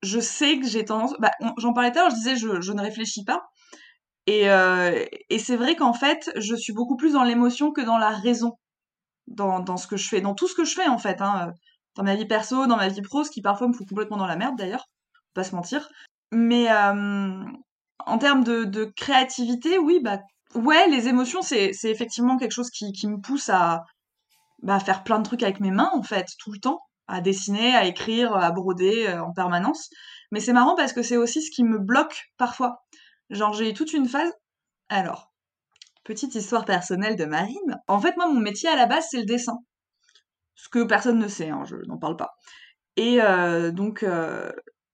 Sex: female